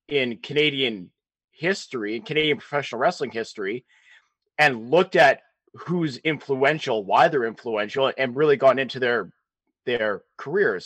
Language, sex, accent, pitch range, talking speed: English, male, American, 135-175 Hz, 120 wpm